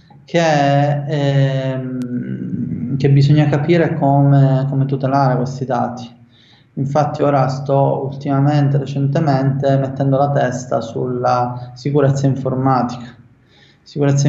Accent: native